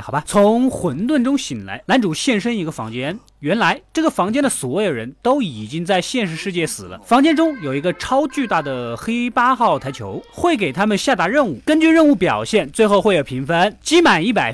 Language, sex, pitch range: Chinese, male, 180-270 Hz